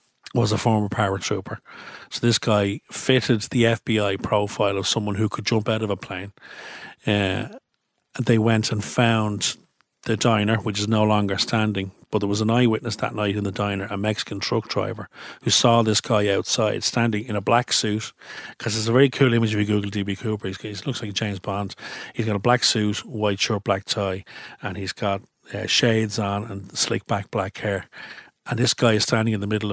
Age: 40-59